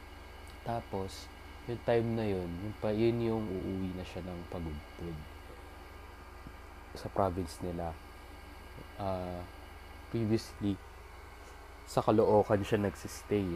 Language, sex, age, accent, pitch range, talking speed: Filipino, male, 20-39, native, 75-95 Hz, 100 wpm